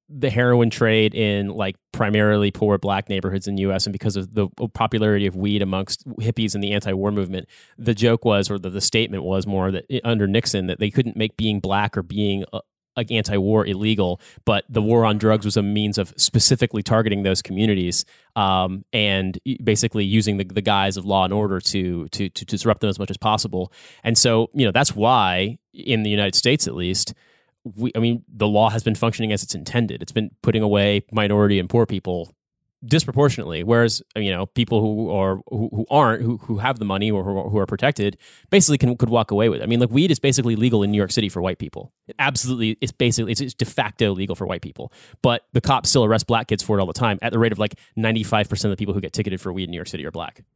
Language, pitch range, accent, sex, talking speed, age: English, 100-115 Hz, American, male, 235 wpm, 30-49